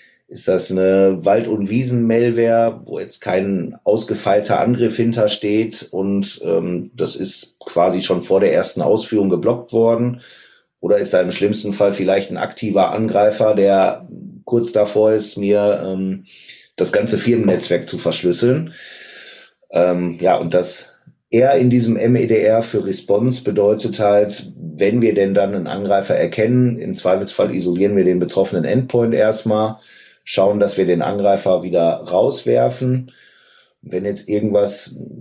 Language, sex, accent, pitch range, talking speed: German, male, German, 95-115 Hz, 140 wpm